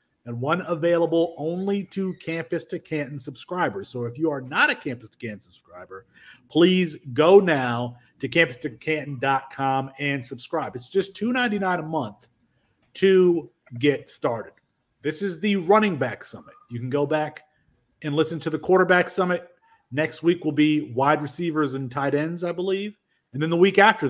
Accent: American